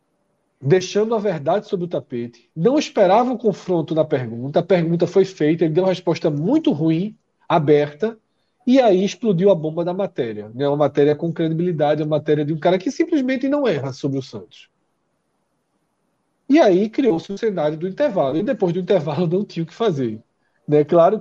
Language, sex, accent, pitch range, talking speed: Portuguese, male, Brazilian, 150-210 Hz, 185 wpm